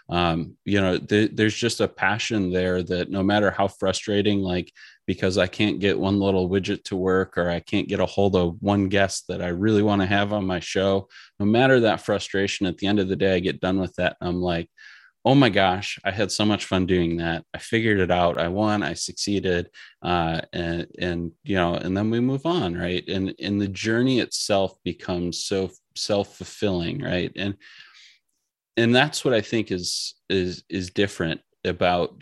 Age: 30-49